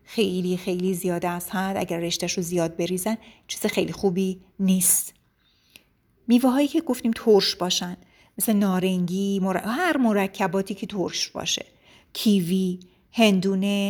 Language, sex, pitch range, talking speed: Persian, female, 185-220 Hz, 115 wpm